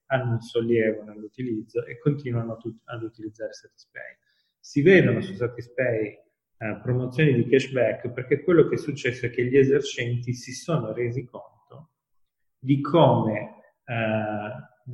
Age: 30-49